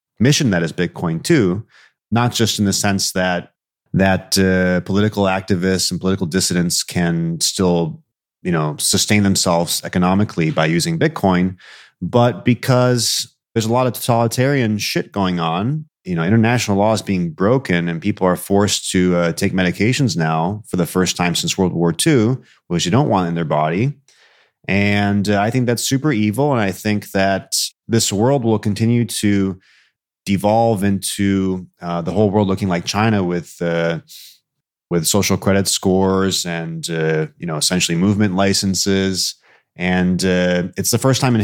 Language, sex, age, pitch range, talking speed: English, male, 30-49, 90-110 Hz, 165 wpm